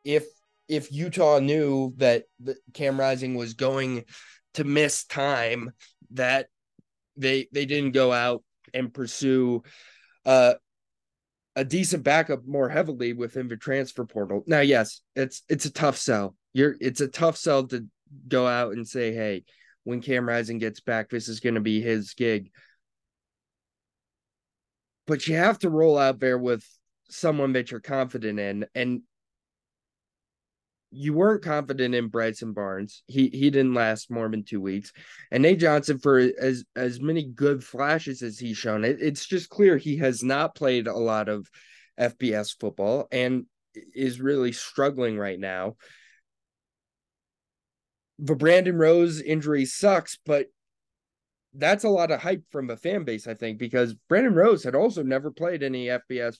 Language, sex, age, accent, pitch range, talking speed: English, male, 20-39, American, 115-145 Hz, 155 wpm